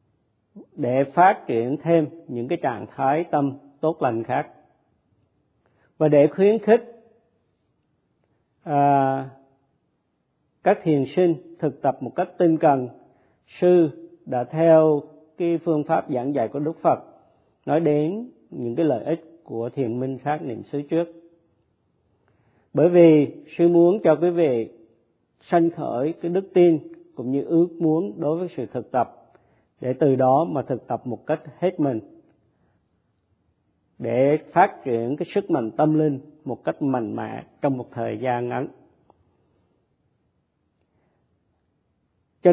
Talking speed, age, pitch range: 140 wpm, 50-69, 125-165 Hz